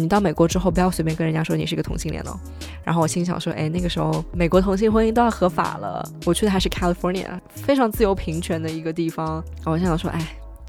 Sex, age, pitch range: female, 20-39, 160-190 Hz